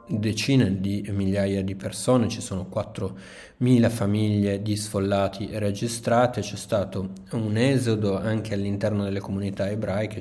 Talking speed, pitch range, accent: 125 wpm, 95-115 Hz, native